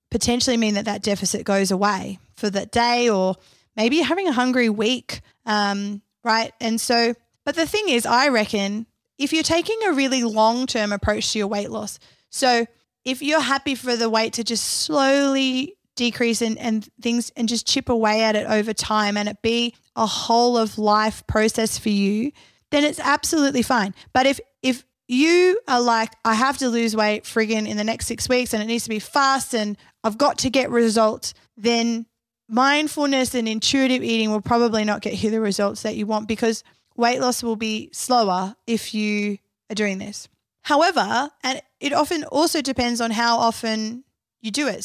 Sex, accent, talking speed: female, Australian, 185 wpm